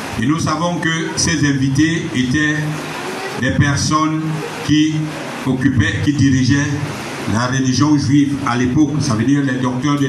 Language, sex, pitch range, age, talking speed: French, male, 130-150 Hz, 60-79, 145 wpm